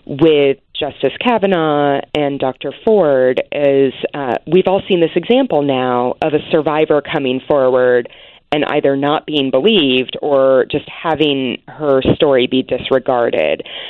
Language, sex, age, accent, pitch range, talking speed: English, female, 30-49, American, 140-200 Hz, 135 wpm